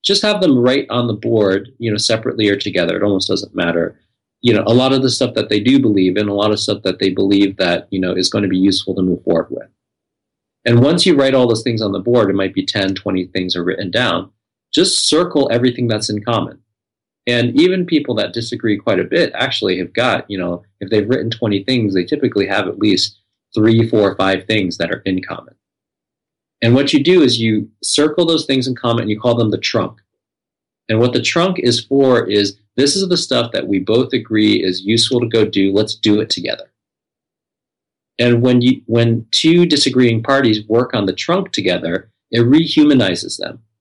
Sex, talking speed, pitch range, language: male, 220 wpm, 100-130 Hz, English